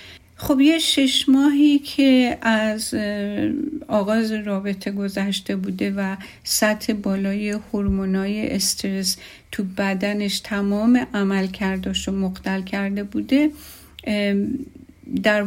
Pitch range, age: 195-255 Hz, 50-69